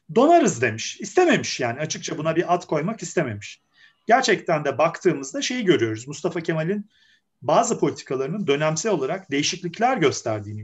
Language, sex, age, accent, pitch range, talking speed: Turkish, male, 40-59, native, 135-210 Hz, 130 wpm